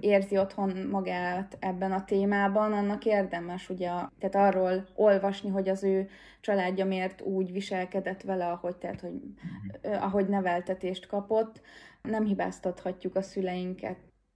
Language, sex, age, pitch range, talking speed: Hungarian, female, 20-39, 185-205 Hz, 125 wpm